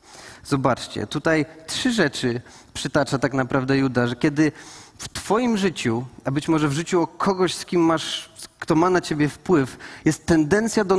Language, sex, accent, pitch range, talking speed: Polish, male, native, 150-185 Hz, 170 wpm